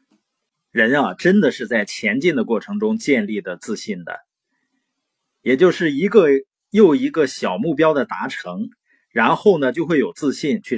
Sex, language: male, Chinese